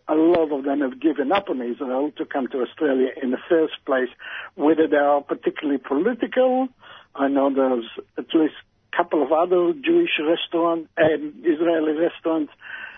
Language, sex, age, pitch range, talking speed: English, male, 60-79, 135-195 Hz, 165 wpm